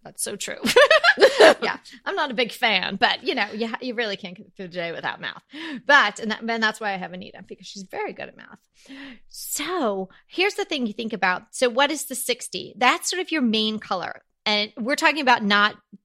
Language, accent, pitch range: English, American, 190-250 Hz